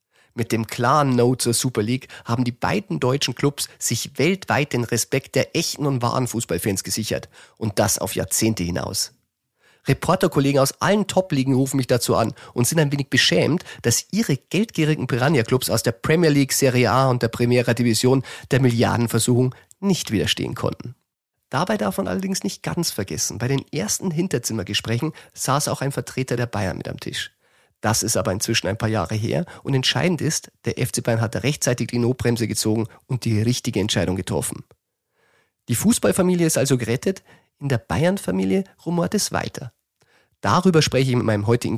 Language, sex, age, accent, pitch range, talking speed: German, male, 40-59, German, 110-140 Hz, 175 wpm